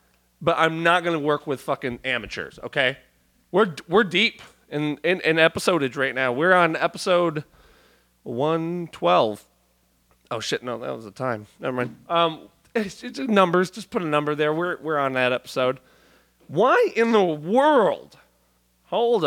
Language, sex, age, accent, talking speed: English, male, 30-49, American, 160 wpm